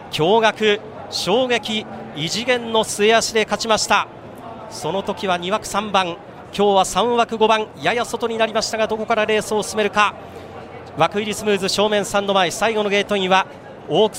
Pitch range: 210-270 Hz